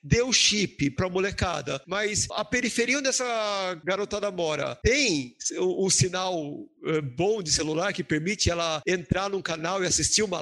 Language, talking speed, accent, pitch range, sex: Portuguese, 155 wpm, Brazilian, 165-205 Hz, male